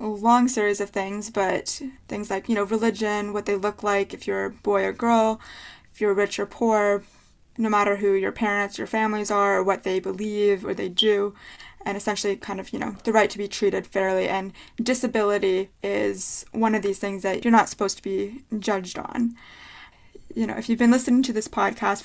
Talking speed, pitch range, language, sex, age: 205 wpm, 195-220 Hz, English, female, 20-39